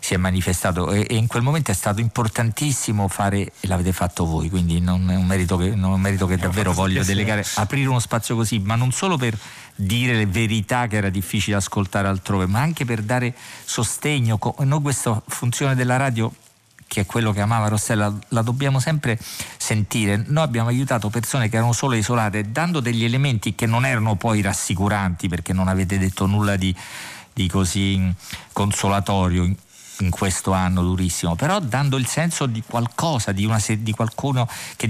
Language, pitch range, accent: Italian, 95-120 Hz, native